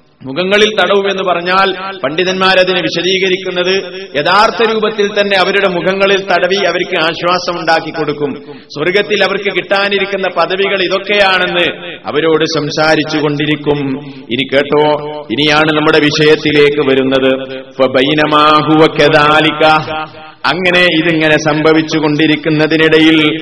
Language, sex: Malayalam, male